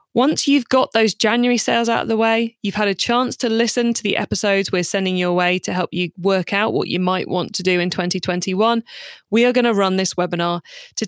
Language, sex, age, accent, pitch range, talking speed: English, female, 20-39, British, 185-245 Hz, 240 wpm